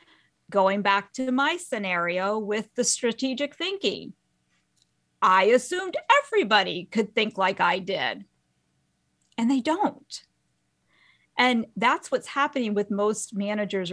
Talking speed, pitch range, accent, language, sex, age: 115 wpm, 200-265 Hz, American, English, female, 40-59